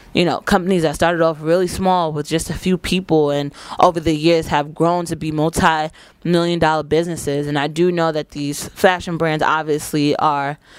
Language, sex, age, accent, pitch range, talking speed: English, female, 20-39, American, 155-195 Hz, 190 wpm